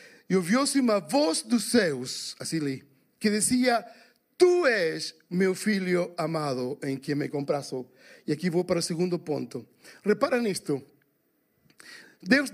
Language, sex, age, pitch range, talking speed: Portuguese, male, 50-69, 175-245 Hz, 140 wpm